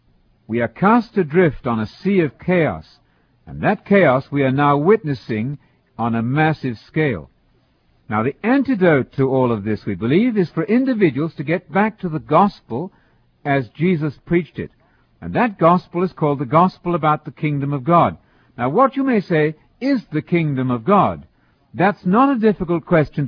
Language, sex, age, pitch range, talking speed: English, male, 60-79, 135-195 Hz, 180 wpm